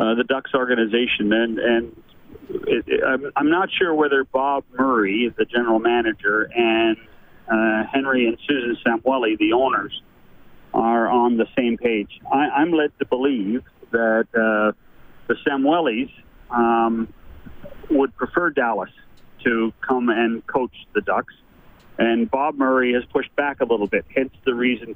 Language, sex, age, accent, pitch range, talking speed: English, male, 40-59, American, 115-150 Hz, 150 wpm